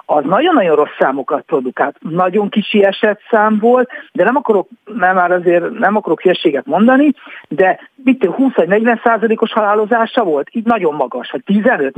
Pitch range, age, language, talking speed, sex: 175-235 Hz, 60-79, Hungarian, 165 wpm, male